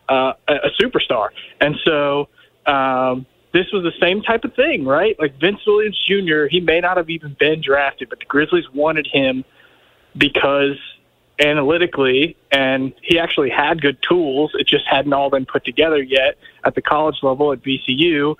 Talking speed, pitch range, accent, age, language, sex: 170 wpm, 140-170 Hz, American, 20-39, English, male